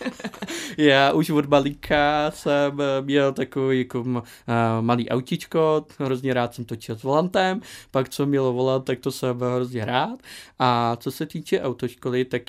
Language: Czech